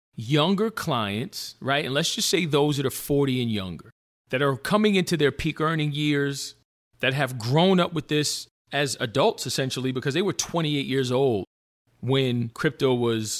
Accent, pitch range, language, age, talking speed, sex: American, 125-165 Hz, English, 40-59, 175 wpm, male